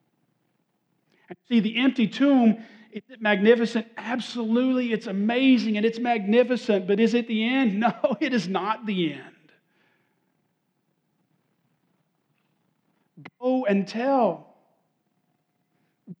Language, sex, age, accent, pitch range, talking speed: English, male, 40-59, American, 175-235 Hz, 95 wpm